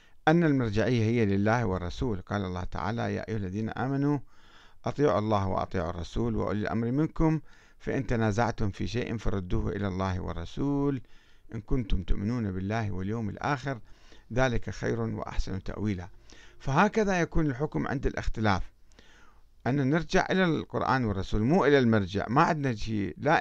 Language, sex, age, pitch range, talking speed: Arabic, male, 50-69, 100-130 Hz, 135 wpm